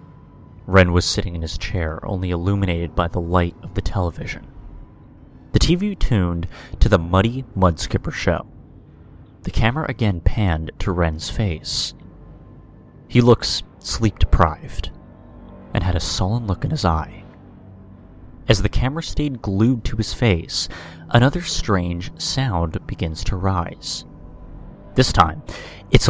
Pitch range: 90-115 Hz